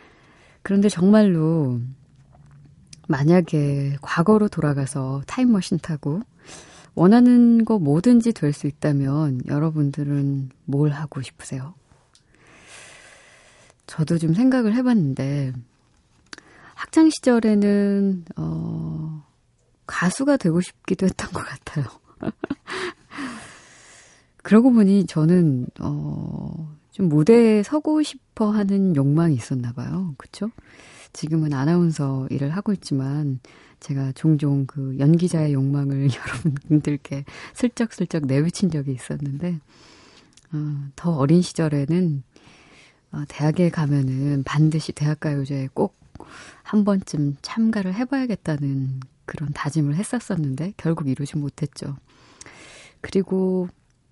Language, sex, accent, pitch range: Korean, female, native, 140-185 Hz